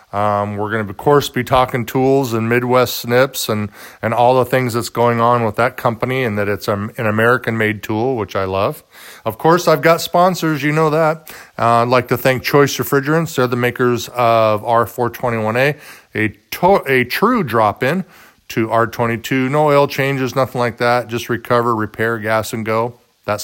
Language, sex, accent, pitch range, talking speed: English, male, American, 110-140 Hz, 185 wpm